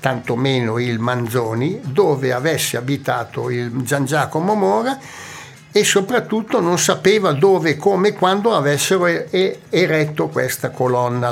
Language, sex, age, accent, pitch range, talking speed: Italian, male, 60-79, native, 135-195 Hz, 120 wpm